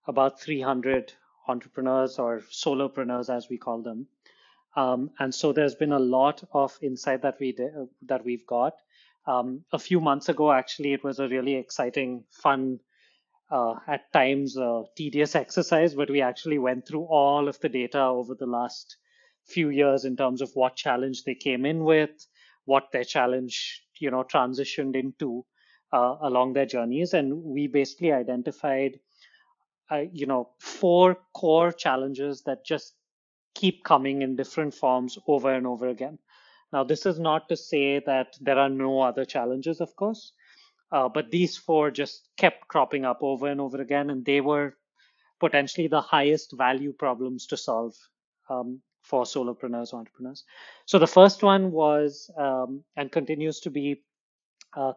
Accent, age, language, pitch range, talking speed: Indian, 30-49, English, 130-155 Hz, 160 wpm